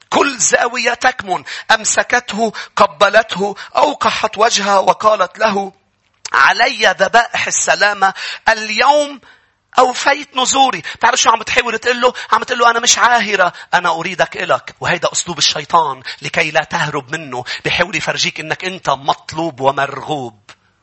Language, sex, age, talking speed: English, male, 40-59, 120 wpm